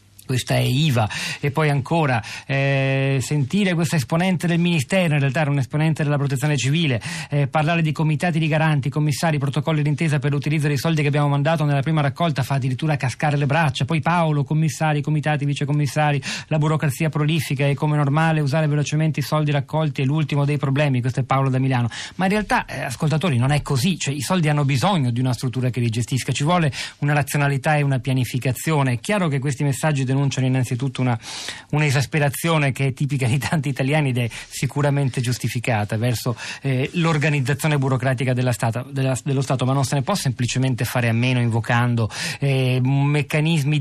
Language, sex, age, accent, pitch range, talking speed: Italian, male, 40-59, native, 130-155 Hz, 185 wpm